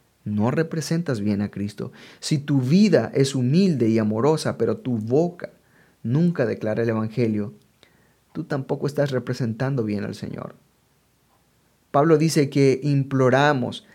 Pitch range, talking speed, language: 120-150 Hz, 130 wpm, English